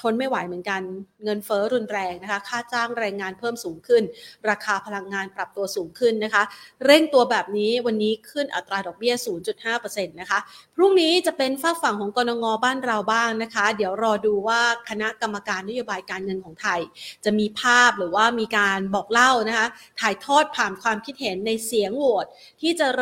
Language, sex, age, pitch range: Thai, female, 30-49, 200-250 Hz